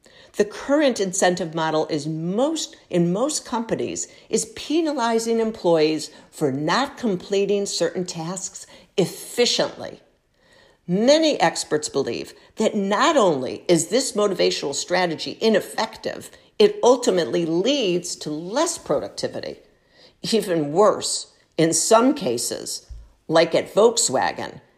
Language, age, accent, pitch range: English, 60-79, American, 160-230 Hz